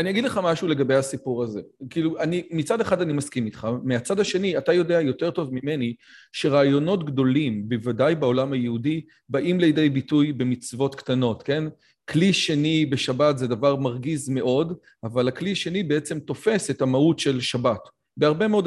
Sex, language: male, Hebrew